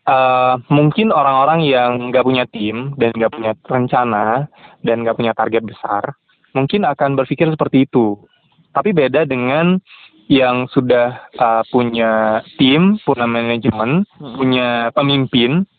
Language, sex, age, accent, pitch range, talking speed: Indonesian, male, 20-39, native, 120-165 Hz, 125 wpm